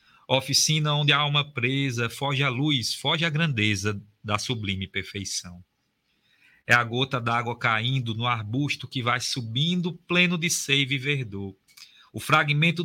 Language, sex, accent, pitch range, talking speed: Portuguese, male, Brazilian, 115-150 Hz, 145 wpm